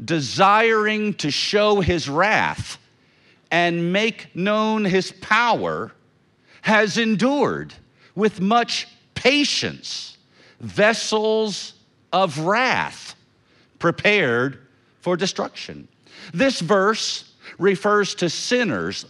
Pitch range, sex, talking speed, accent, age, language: 150-220 Hz, male, 80 wpm, American, 50-69, English